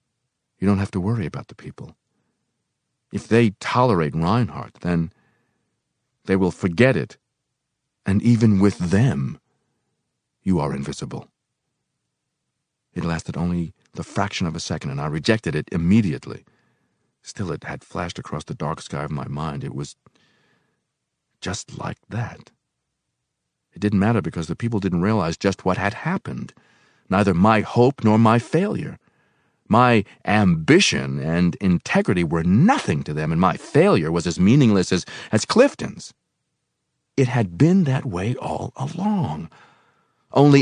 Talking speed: 140 wpm